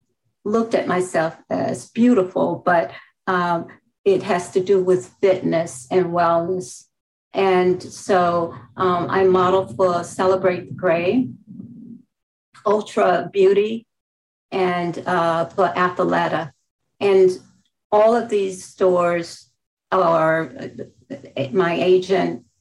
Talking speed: 100 wpm